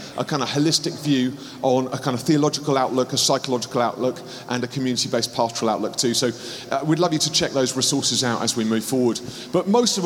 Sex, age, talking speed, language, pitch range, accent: male, 40-59, 220 wpm, English, 130-165 Hz, British